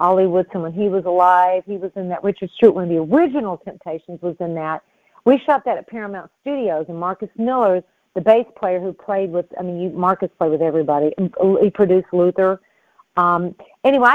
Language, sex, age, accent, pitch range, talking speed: English, female, 50-69, American, 175-220 Hz, 195 wpm